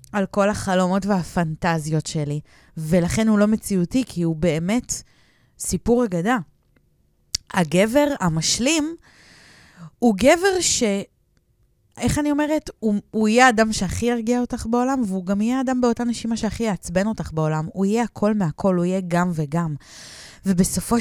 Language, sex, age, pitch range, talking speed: Hebrew, female, 20-39, 165-230 Hz, 140 wpm